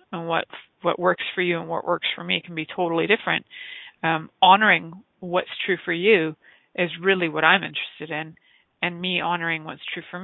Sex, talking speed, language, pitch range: female, 195 wpm, English, 165-195 Hz